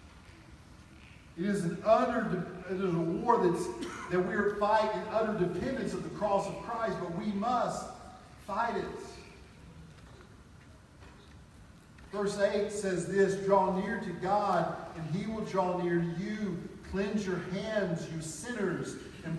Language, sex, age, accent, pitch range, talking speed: English, male, 50-69, American, 165-200 Hz, 140 wpm